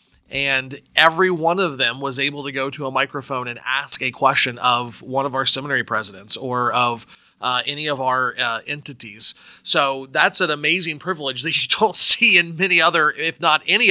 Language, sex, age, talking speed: English, male, 30-49, 195 wpm